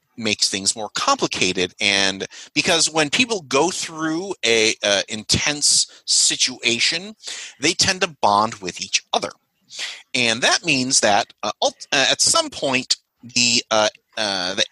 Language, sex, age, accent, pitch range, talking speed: English, male, 30-49, American, 105-165 Hz, 135 wpm